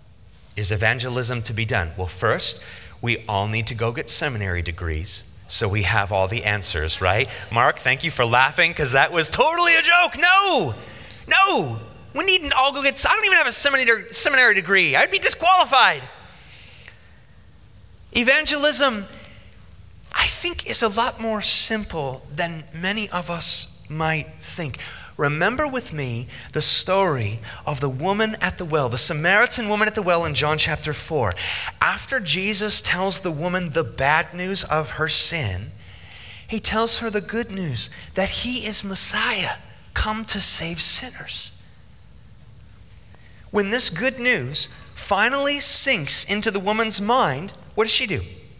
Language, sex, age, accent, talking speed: English, male, 30-49, American, 155 wpm